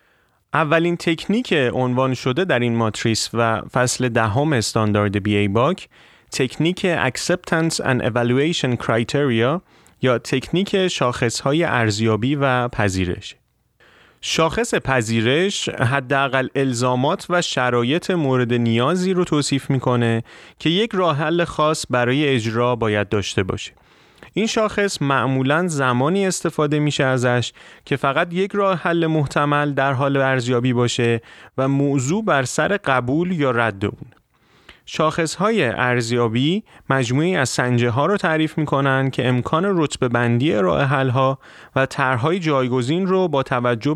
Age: 30-49